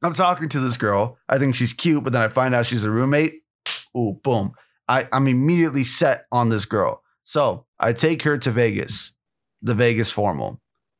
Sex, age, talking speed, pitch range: male, 30-49, 185 wpm, 120-170 Hz